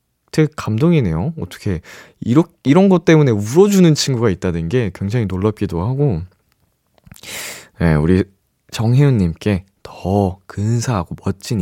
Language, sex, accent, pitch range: Korean, male, native, 95-150 Hz